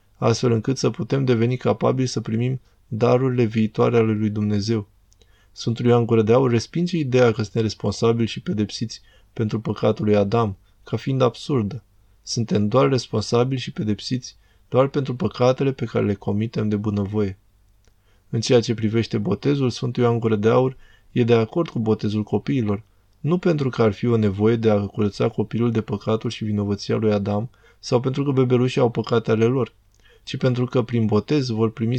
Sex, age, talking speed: male, 20-39, 175 wpm